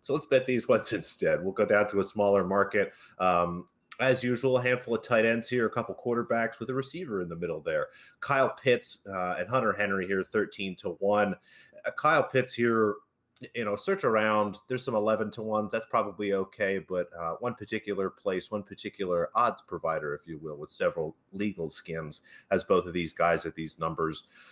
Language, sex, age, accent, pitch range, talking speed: English, male, 30-49, American, 95-115 Hz, 195 wpm